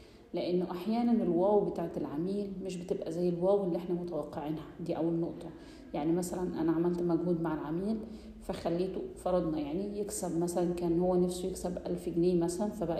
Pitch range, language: 170-195 Hz, Arabic